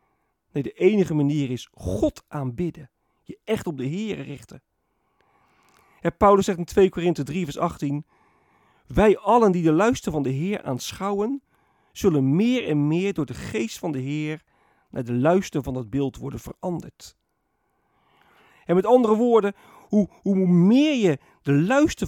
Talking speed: 160 wpm